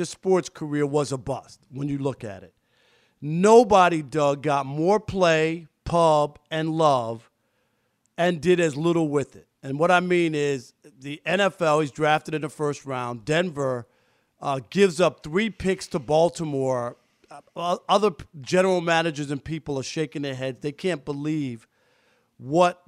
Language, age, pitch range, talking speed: English, 50-69, 135-170 Hz, 155 wpm